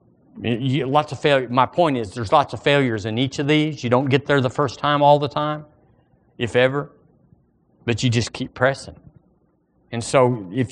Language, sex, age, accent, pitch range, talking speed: English, male, 40-59, American, 110-145 Hz, 180 wpm